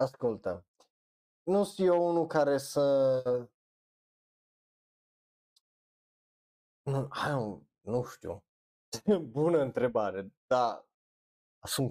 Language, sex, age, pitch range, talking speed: Romanian, male, 30-49, 115-165 Hz, 75 wpm